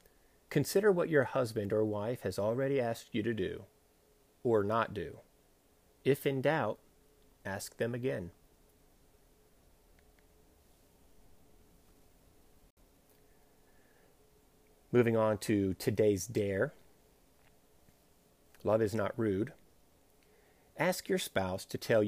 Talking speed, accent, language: 95 wpm, American, English